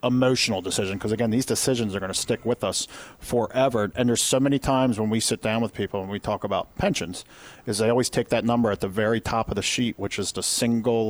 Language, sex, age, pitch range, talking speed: English, male, 40-59, 105-130 Hz, 250 wpm